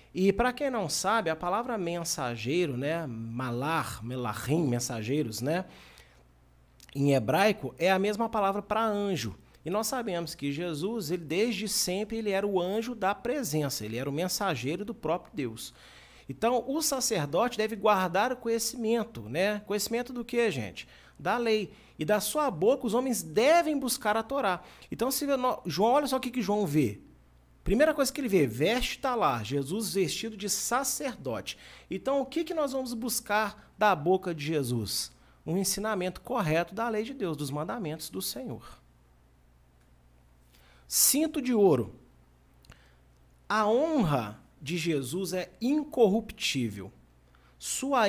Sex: male